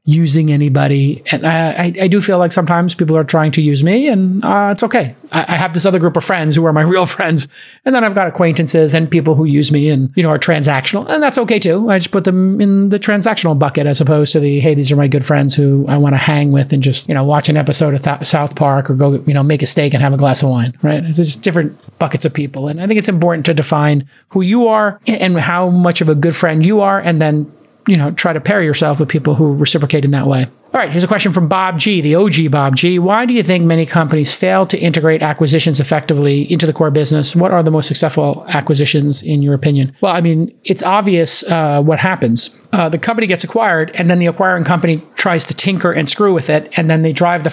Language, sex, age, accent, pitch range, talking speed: English, male, 30-49, American, 150-185 Hz, 260 wpm